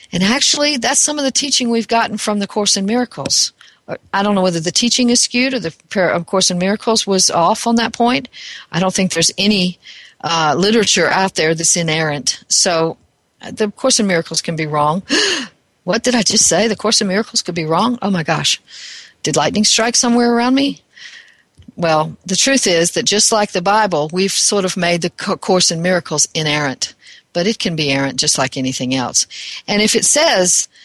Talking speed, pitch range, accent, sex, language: 200 wpm, 175-230 Hz, American, female, English